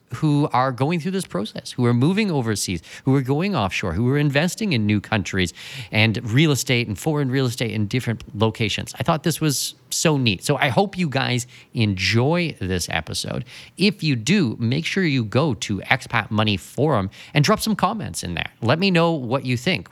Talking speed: 200 wpm